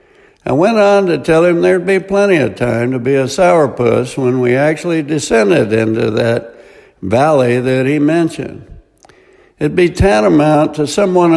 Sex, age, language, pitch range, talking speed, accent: male, 60-79, English, 125-185 Hz, 160 wpm, American